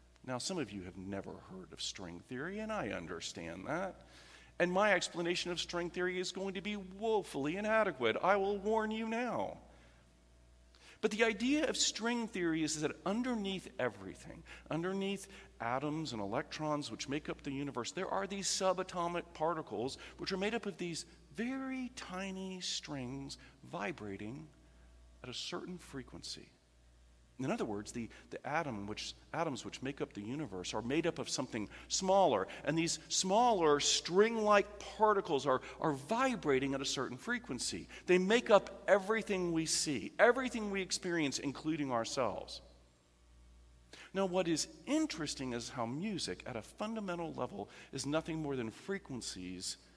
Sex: male